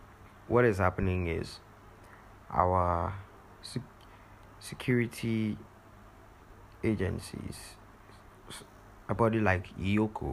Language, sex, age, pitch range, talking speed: English, male, 20-39, 95-105 Hz, 70 wpm